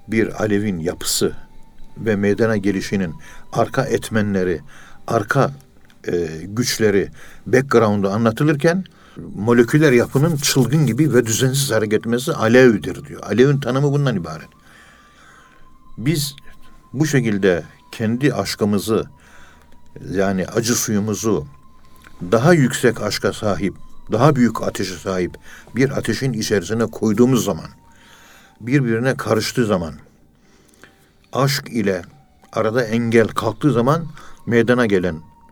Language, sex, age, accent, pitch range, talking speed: Turkish, male, 60-79, native, 100-130 Hz, 100 wpm